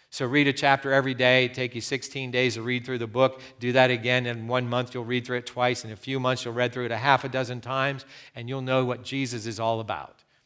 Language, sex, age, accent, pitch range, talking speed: English, male, 50-69, American, 125-160 Hz, 275 wpm